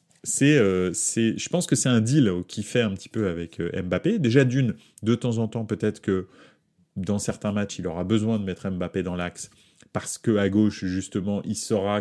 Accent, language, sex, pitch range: French, French, male, 95-130 Hz